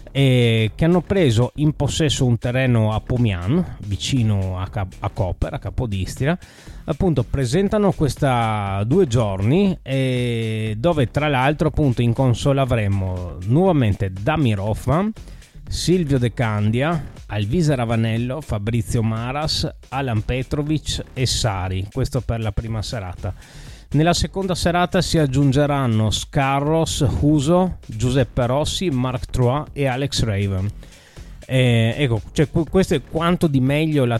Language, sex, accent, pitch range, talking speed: Italian, male, native, 110-145 Hz, 125 wpm